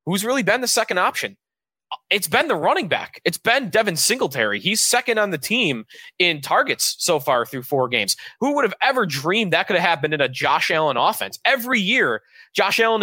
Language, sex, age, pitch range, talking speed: English, male, 20-39, 135-185 Hz, 205 wpm